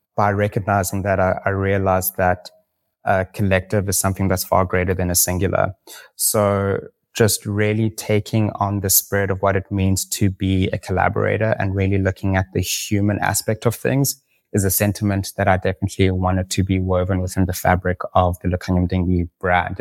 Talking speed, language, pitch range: 180 wpm, English, 90-100 Hz